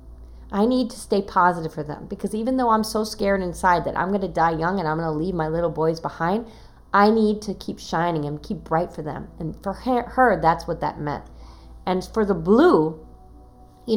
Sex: female